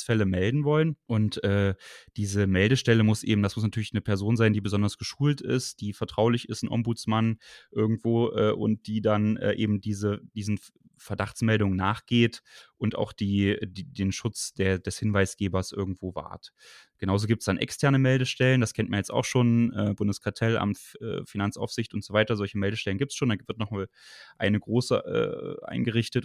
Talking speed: 180 wpm